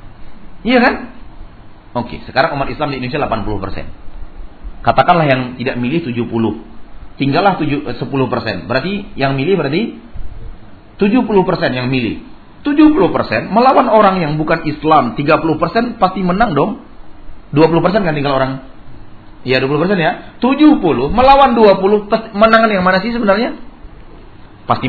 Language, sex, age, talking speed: Malay, male, 40-59, 120 wpm